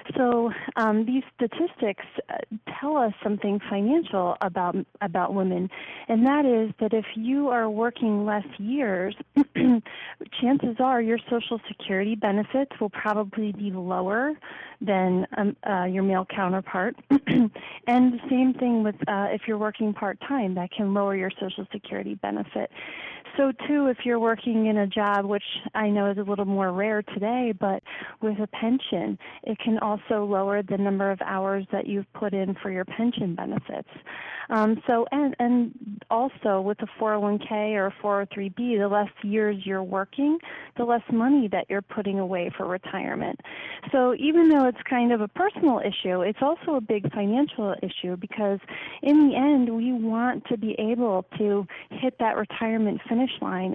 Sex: female